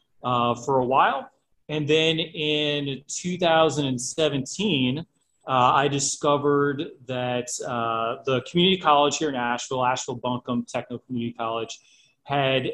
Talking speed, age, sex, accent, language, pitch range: 120 wpm, 30-49, male, American, English, 125-150 Hz